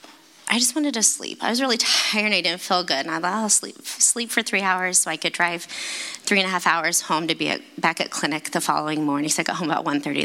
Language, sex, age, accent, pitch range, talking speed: English, female, 20-39, American, 160-250 Hz, 275 wpm